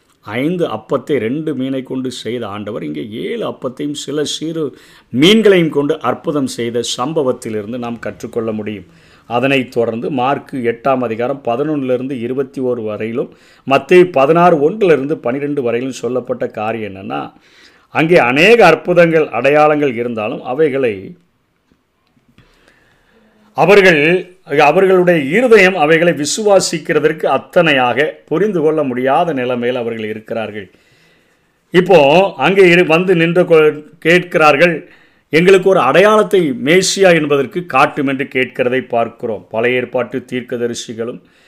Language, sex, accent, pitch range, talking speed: Tamil, male, native, 125-175 Hz, 100 wpm